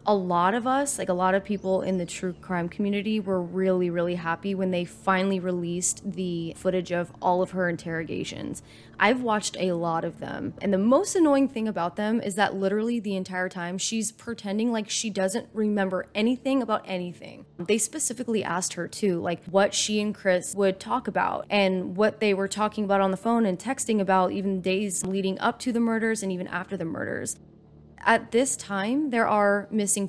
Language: English